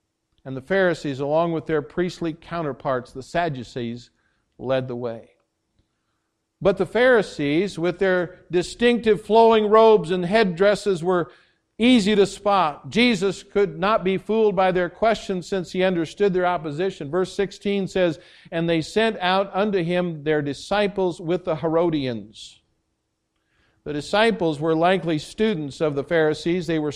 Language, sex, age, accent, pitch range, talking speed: English, male, 50-69, American, 155-185 Hz, 140 wpm